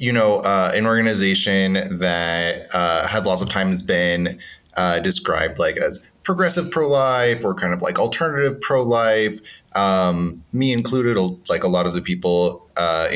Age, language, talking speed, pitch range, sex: 30-49, English, 150 wpm, 90-120 Hz, male